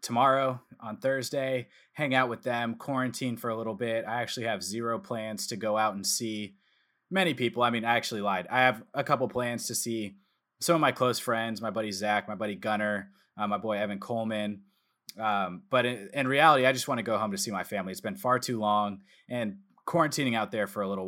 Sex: male